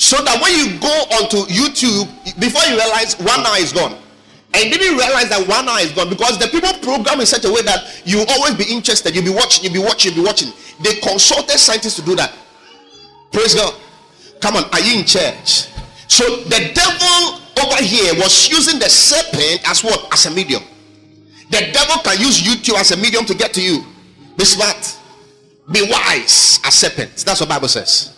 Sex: male